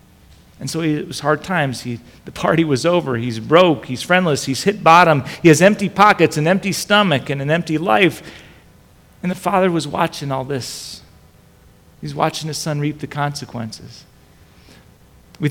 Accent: American